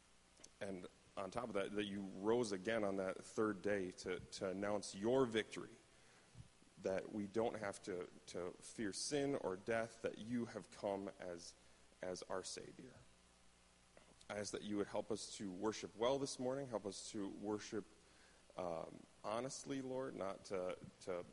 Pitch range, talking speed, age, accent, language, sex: 85-110 Hz, 165 wpm, 30-49, American, English, male